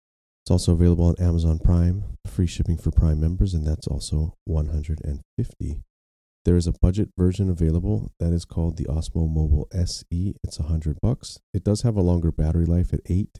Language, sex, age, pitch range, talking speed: English, male, 30-49, 80-95 Hz, 180 wpm